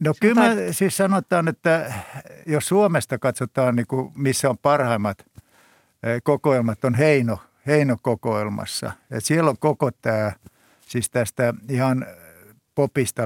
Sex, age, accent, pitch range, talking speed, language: male, 60-79, native, 115-140 Hz, 120 wpm, Finnish